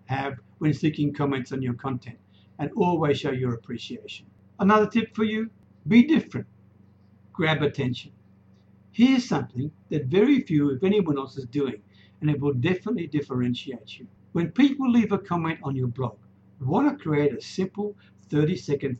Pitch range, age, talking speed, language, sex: 120-180 Hz, 60-79, 160 wpm, English, male